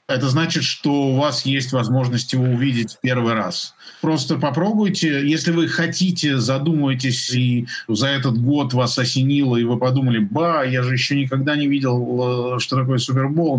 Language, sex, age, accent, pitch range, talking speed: Russian, male, 50-69, native, 130-165 Hz, 165 wpm